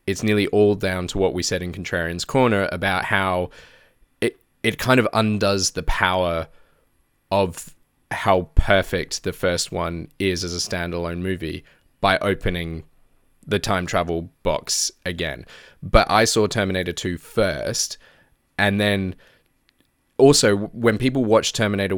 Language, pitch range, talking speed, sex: English, 90-105 Hz, 140 wpm, male